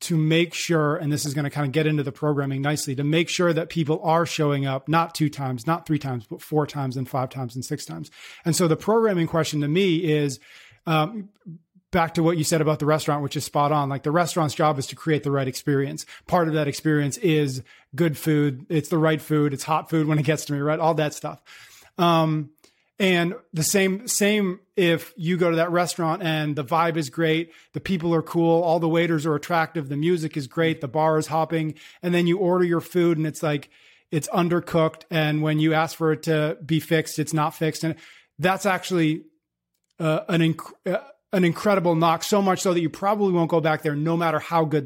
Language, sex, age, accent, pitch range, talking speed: English, male, 30-49, American, 150-170 Hz, 230 wpm